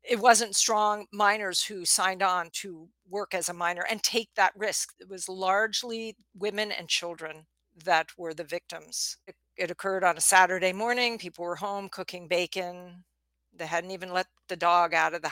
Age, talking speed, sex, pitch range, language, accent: 50-69, 185 wpm, female, 175-235 Hz, English, American